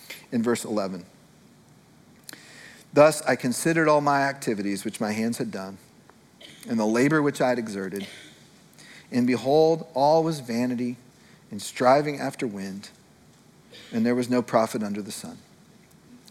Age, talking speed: 40-59, 140 wpm